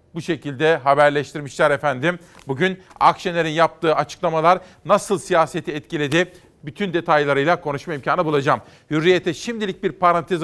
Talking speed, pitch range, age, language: 115 wpm, 155-180 Hz, 40-59, Turkish